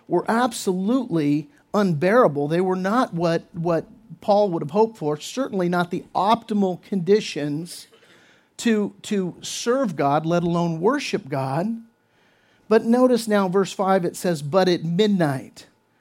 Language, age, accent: English, 50-69, American